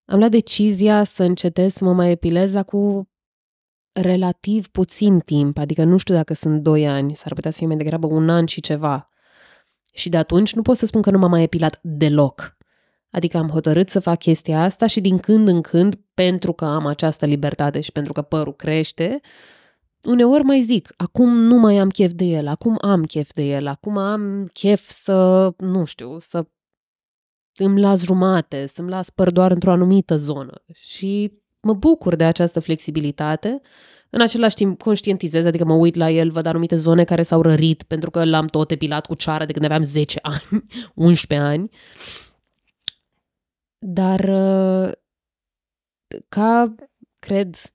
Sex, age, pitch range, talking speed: female, 20-39, 160-200 Hz, 170 wpm